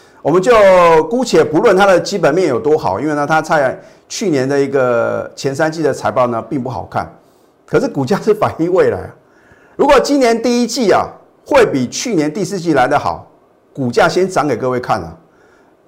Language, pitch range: Chinese, 125-165 Hz